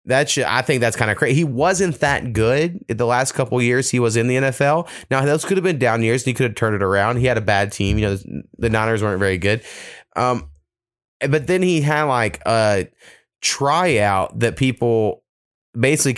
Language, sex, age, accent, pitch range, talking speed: English, male, 20-39, American, 100-130 Hz, 215 wpm